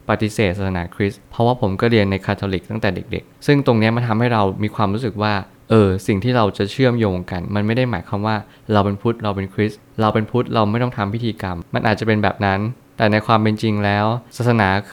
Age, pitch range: 20-39, 95-115 Hz